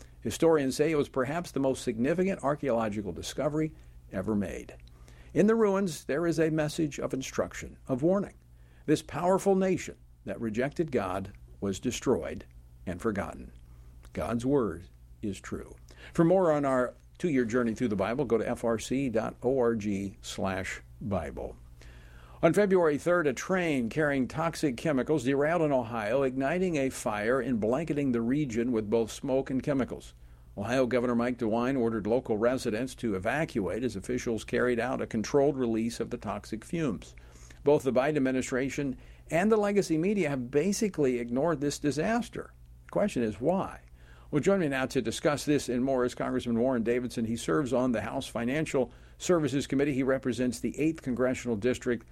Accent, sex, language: American, male, English